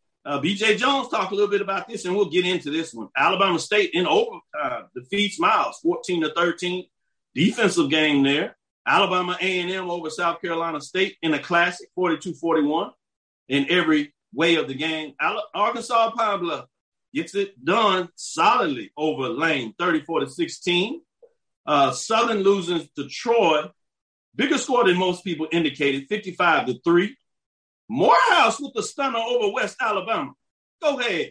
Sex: male